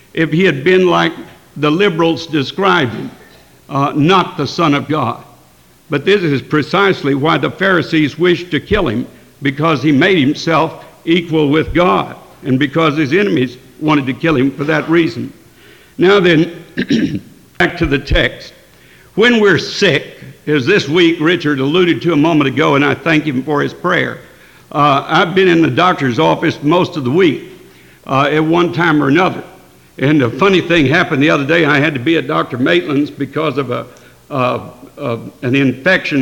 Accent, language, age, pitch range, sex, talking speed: American, English, 60-79, 140-170 Hz, male, 180 wpm